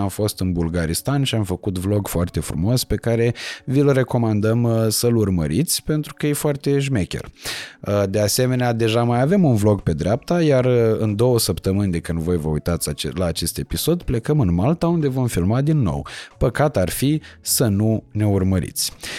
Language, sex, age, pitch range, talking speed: Romanian, male, 30-49, 90-125 Hz, 180 wpm